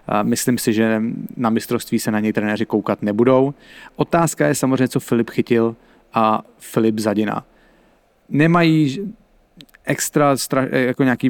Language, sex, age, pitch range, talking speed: English, male, 30-49, 110-130 Hz, 125 wpm